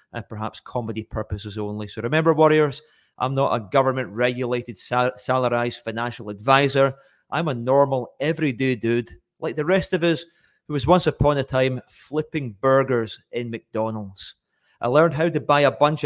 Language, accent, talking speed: English, British, 155 wpm